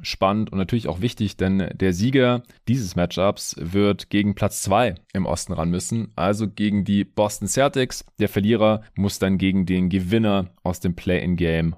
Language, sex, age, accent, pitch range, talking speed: German, male, 30-49, German, 90-115 Hz, 170 wpm